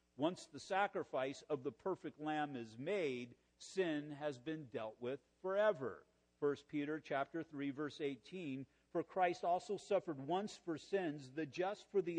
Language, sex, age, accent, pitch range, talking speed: English, male, 50-69, American, 120-180 Hz, 160 wpm